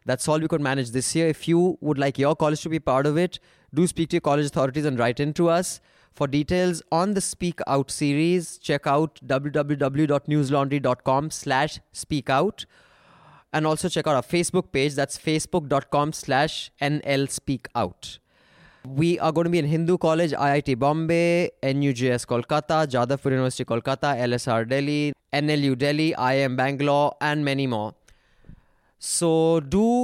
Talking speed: 160 wpm